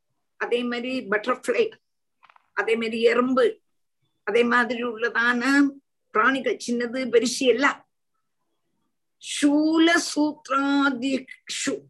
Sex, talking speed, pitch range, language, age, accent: female, 55 wpm, 200-300 Hz, Tamil, 50-69, native